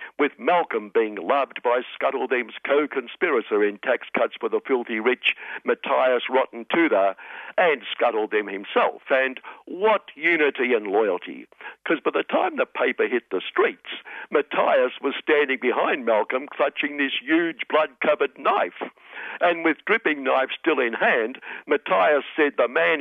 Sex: male